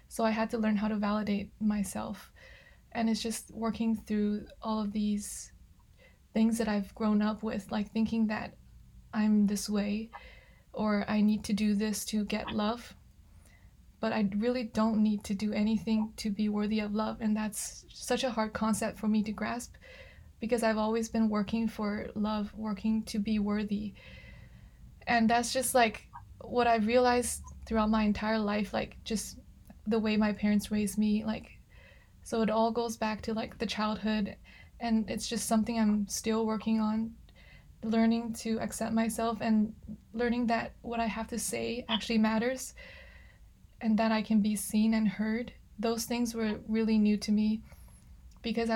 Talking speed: 170 wpm